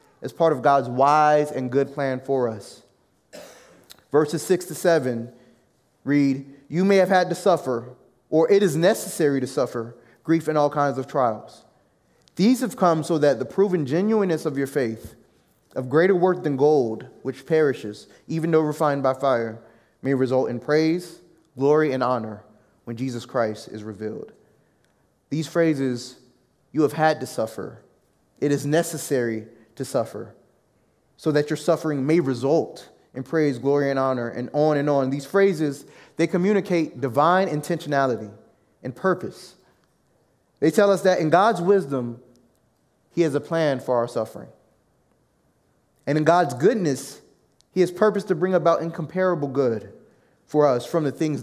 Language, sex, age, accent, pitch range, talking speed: English, male, 20-39, American, 130-165 Hz, 155 wpm